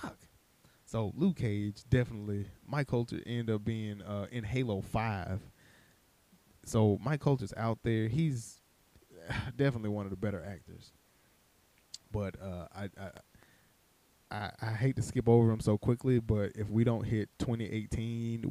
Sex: male